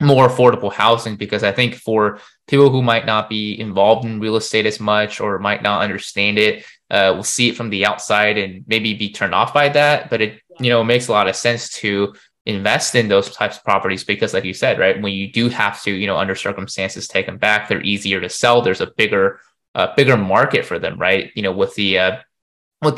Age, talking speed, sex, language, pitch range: 20-39, 235 wpm, male, English, 95-110 Hz